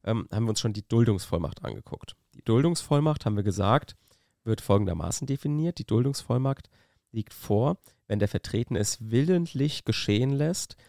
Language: German